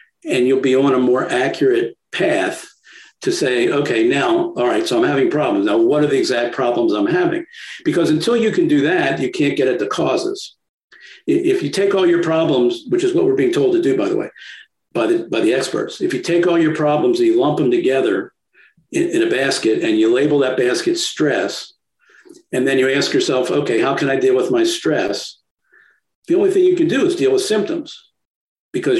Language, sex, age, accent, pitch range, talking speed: English, male, 50-69, American, 325-370 Hz, 215 wpm